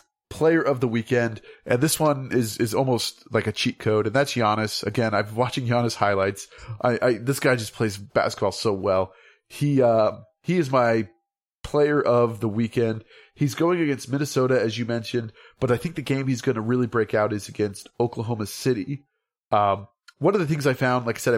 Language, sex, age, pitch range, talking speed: English, male, 30-49, 105-130 Hz, 200 wpm